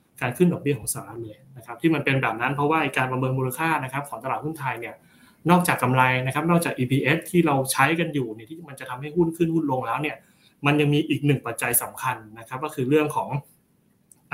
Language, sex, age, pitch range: Thai, male, 20-39, 120-150 Hz